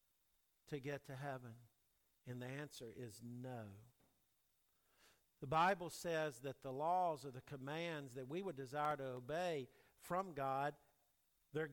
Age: 50-69